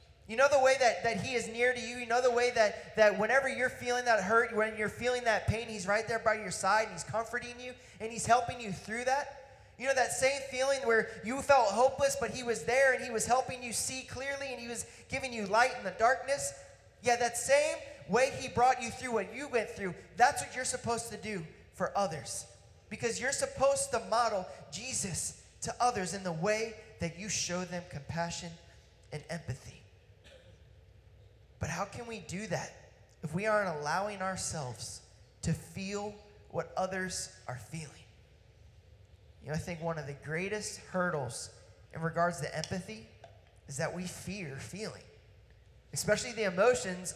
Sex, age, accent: male, 30-49, American